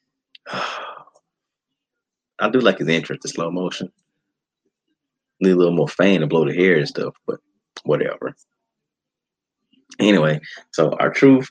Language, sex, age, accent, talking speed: English, male, 30-49, American, 130 wpm